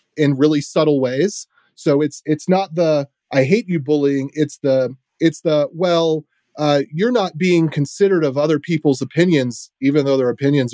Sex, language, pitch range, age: male, English, 135-170 Hz, 30-49